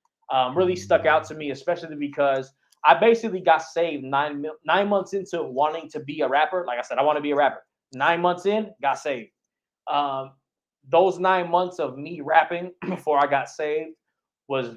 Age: 20-39